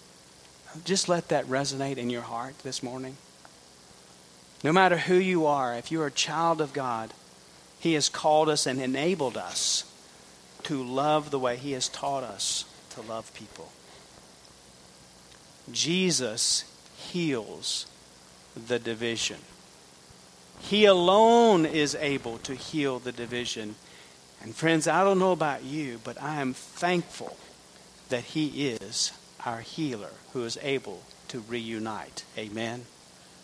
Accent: American